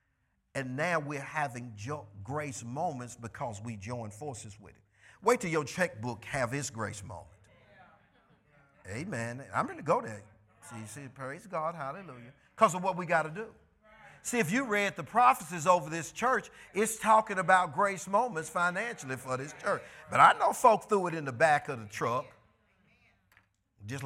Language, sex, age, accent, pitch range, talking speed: English, male, 50-69, American, 105-155 Hz, 175 wpm